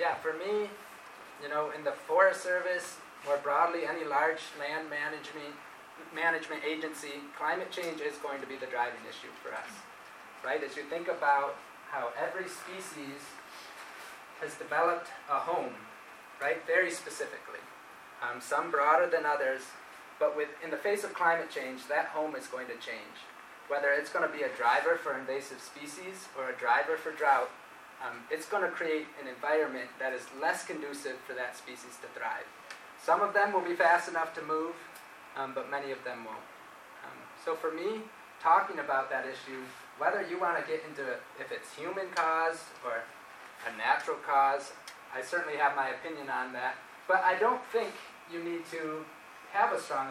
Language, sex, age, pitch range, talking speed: English, male, 20-39, 145-185 Hz, 175 wpm